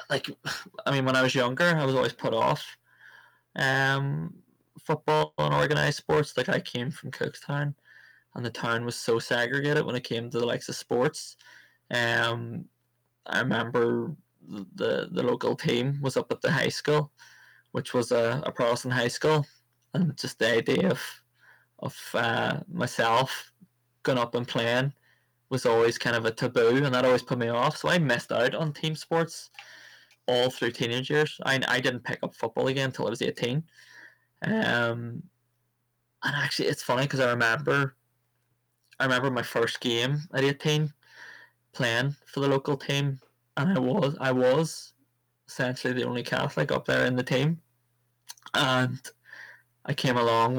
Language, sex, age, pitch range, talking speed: English, male, 20-39, 120-140 Hz, 165 wpm